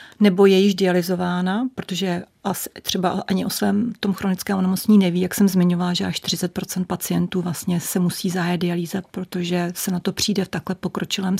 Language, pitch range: Czech, 180-195 Hz